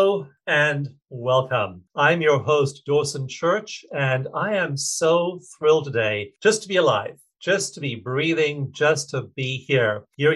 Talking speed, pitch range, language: 155 wpm, 120-155 Hz, English